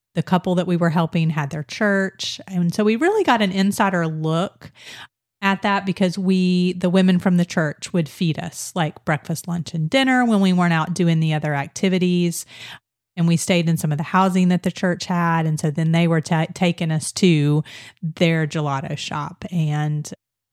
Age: 30-49